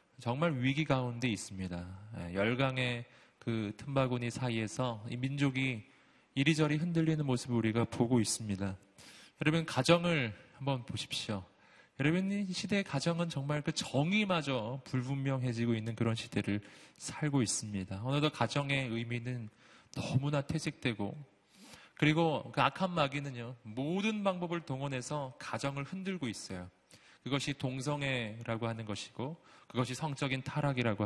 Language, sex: Korean, male